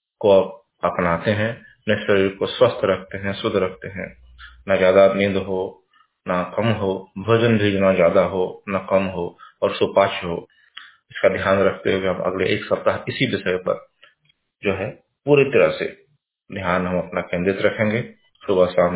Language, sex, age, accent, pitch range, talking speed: Hindi, male, 30-49, native, 90-105 Hz, 175 wpm